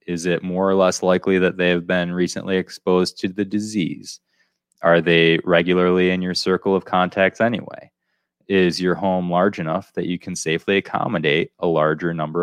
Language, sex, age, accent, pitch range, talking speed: English, male, 20-39, American, 80-95 Hz, 180 wpm